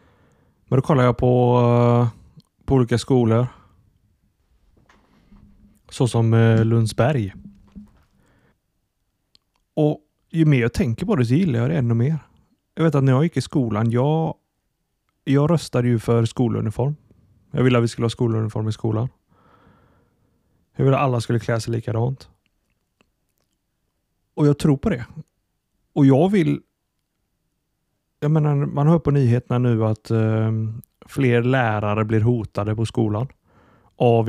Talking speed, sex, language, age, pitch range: 140 wpm, male, Swedish, 30-49, 110-135 Hz